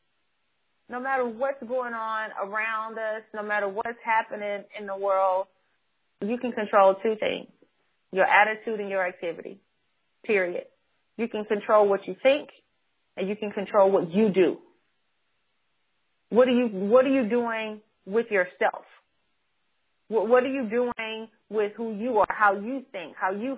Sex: female